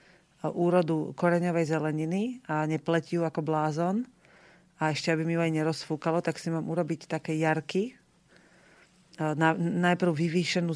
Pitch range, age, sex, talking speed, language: 160-175 Hz, 40-59, female, 130 wpm, Slovak